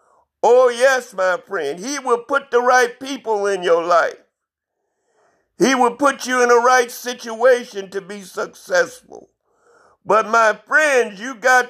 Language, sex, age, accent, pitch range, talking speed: English, male, 60-79, American, 225-290 Hz, 150 wpm